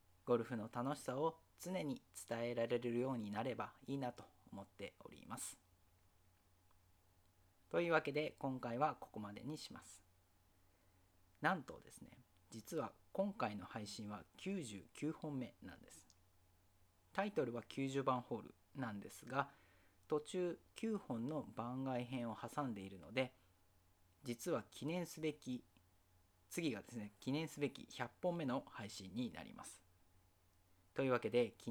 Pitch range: 95-135 Hz